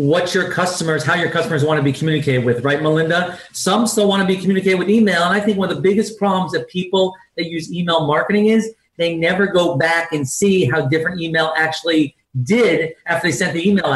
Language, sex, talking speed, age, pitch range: English, male, 225 wpm, 40-59, 155-195 Hz